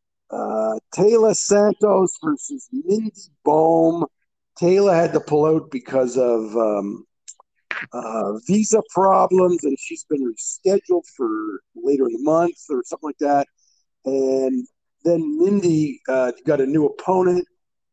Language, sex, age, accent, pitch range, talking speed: English, male, 50-69, American, 135-220 Hz, 125 wpm